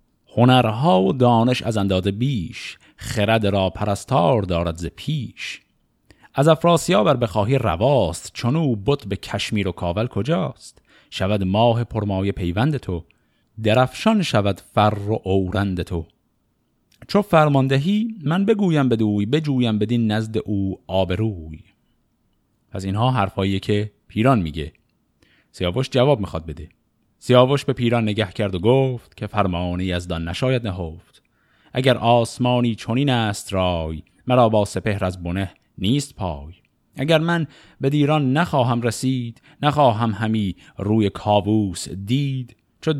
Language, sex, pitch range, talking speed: Persian, male, 100-130 Hz, 130 wpm